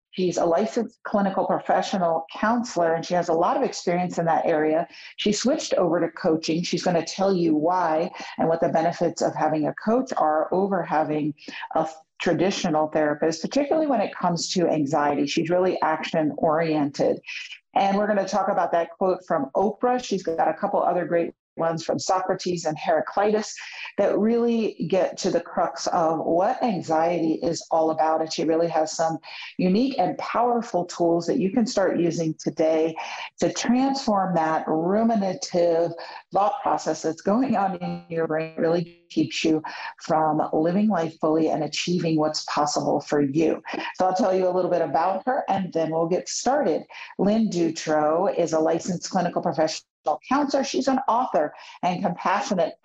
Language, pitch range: English, 160-200 Hz